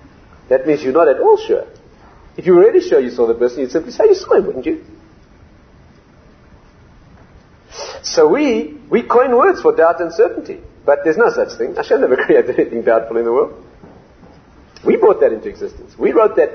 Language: English